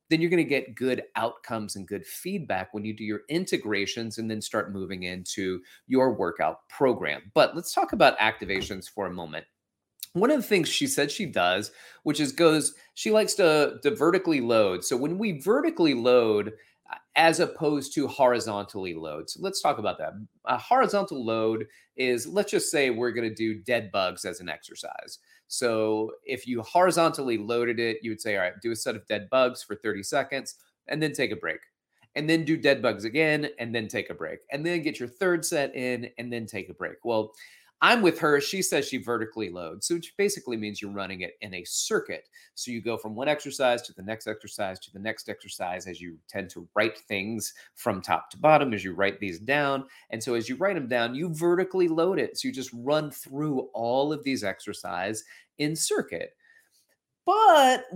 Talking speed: 205 wpm